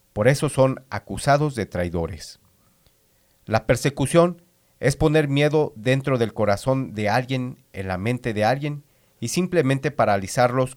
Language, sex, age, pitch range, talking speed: English, male, 40-59, 110-145 Hz, 135 wpm